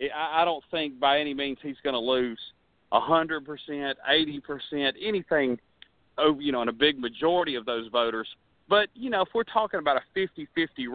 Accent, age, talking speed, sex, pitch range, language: American, 40-59, 170 wpm, male, 130-185 Hz, English